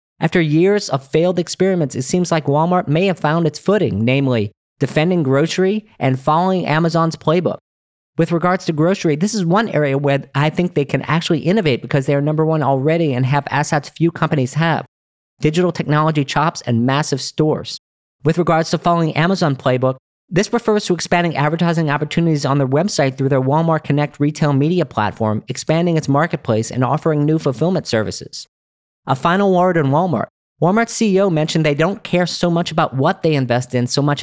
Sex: male